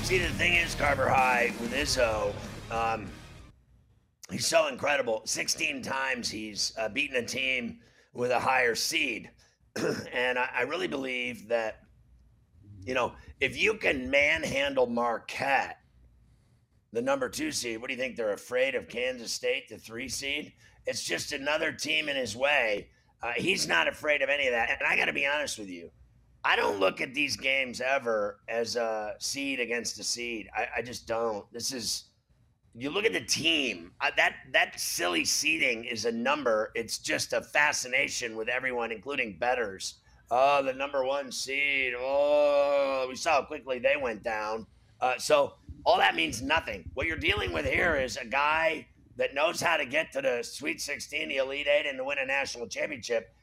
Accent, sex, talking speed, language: American, male, 180 wpm, English